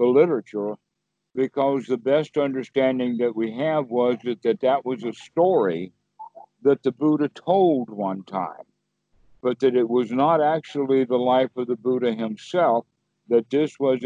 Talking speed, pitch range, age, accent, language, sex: 160 wpm, 115-145 Hz, 60-79, American, English, male